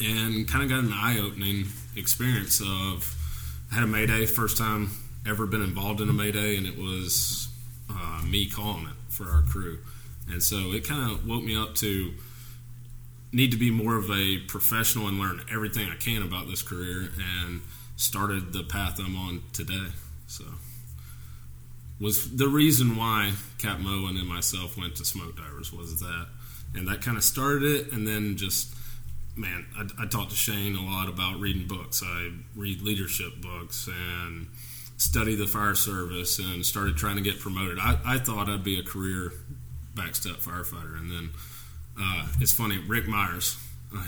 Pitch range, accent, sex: 85-110 Hz, American, male